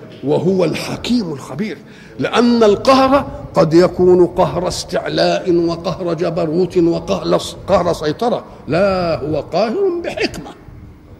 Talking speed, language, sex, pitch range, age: 90 wpm, Arabic, male, 180-245 Hz, 50-69